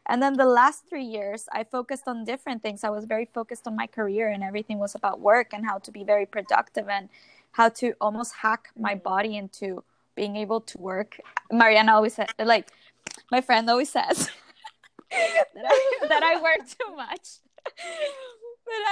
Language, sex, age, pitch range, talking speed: English, female, 20-39, 210-255 Hz, 180 wpm